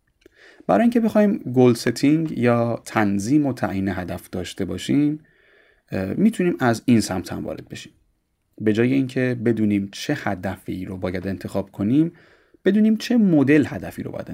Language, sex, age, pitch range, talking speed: Persian, male, 30-49, 95-130 Hz, 140 wpm